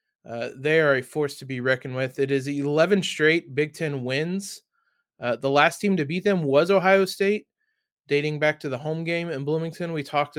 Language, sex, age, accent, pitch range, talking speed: English, male, 20-39, American, 135-165 Hz, 210 wpm